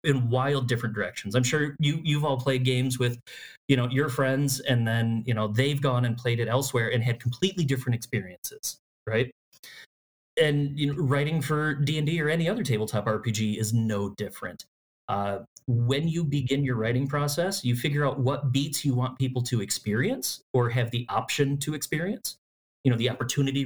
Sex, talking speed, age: male, 185 wpm, 30-49